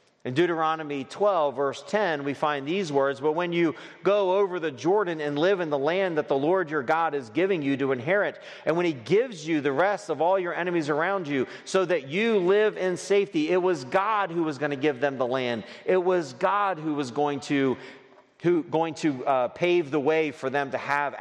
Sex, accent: male, American